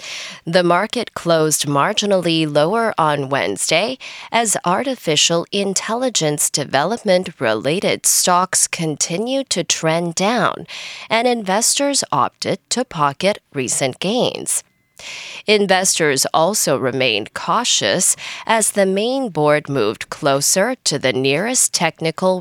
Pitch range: 160-225 Hz